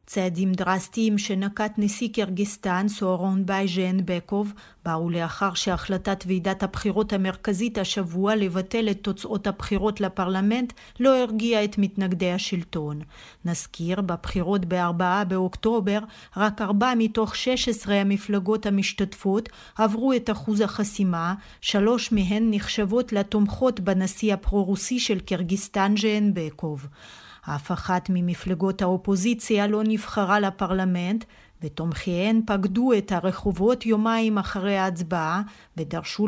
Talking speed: 110 wpm